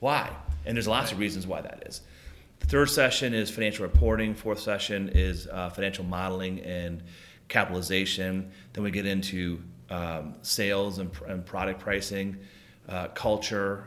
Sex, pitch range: male, 95-110 Hz